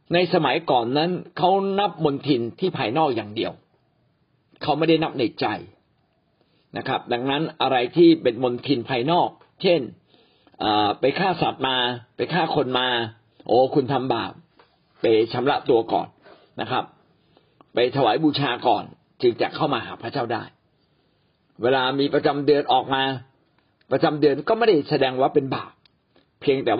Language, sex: Thai, male